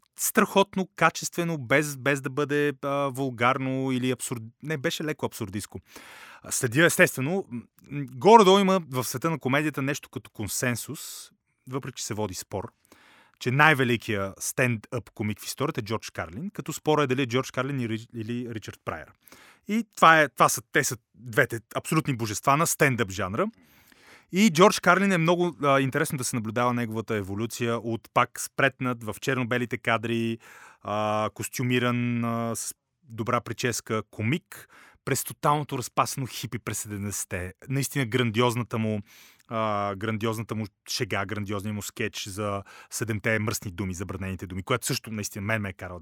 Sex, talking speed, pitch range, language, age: male, 155 wpm, 110-145 Hz, Bulgarian, 30-49